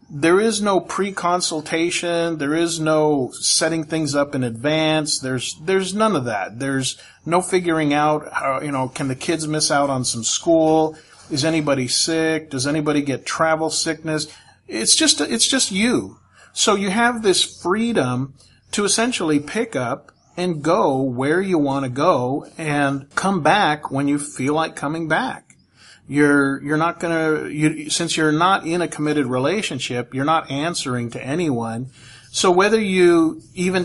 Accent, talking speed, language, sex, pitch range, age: American, 160 wpm, English, male, 140-185 Hz, 40-59